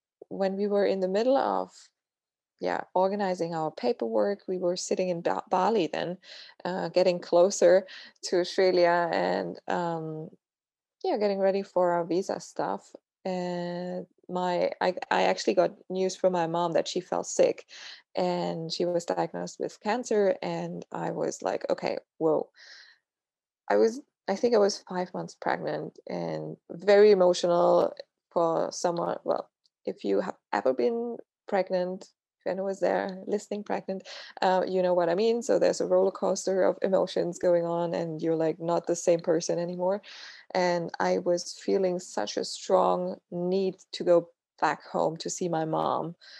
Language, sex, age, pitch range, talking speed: English, female, 20-39, 170-195 Hz, 160 wpm